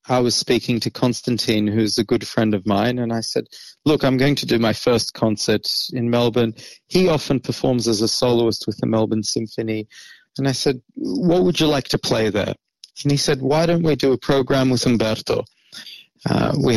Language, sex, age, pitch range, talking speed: Hebrew, male, 30-49, 115-145 Hz, 205 wpm